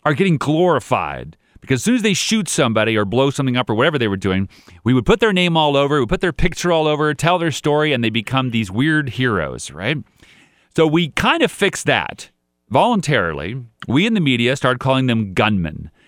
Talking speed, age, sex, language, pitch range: 215 wpm, 40-59, male, English, 115-170 Hz